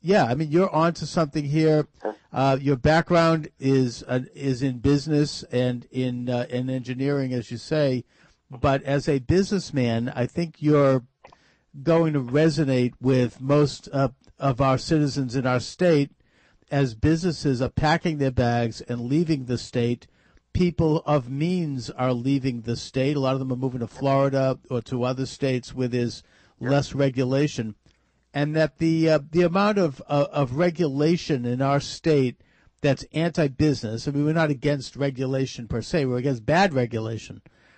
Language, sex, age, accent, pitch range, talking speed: English, male, 50-69, American, 125-160 Hz, 165 wpm